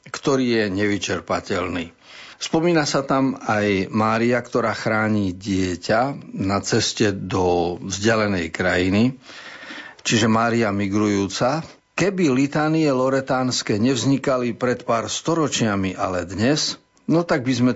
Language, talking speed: Slovak, 110 wpm